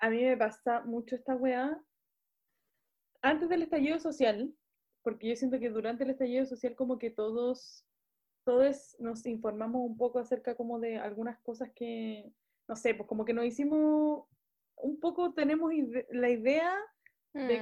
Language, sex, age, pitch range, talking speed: Spanish, female, 20-39, 230-280 Hz, 155 wpm